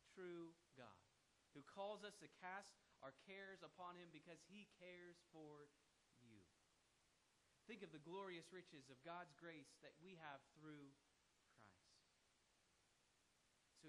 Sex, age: male, 30-49